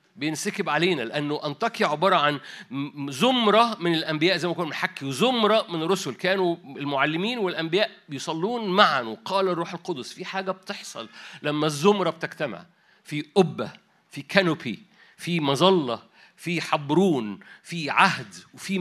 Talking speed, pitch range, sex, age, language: 130 wpm, 125-190 Hz, male, 50-69, Arabic